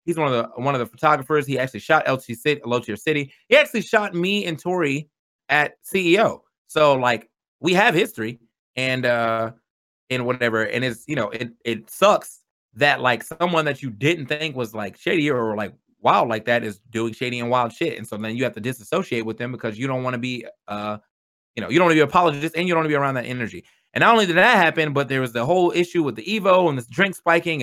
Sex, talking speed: male, 250 wpm